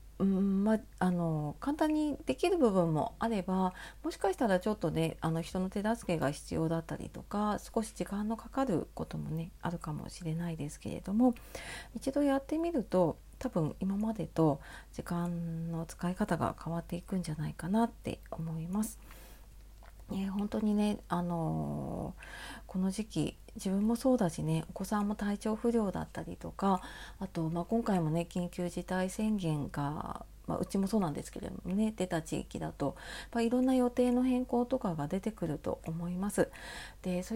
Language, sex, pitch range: Japanese, female, 170-225 Hz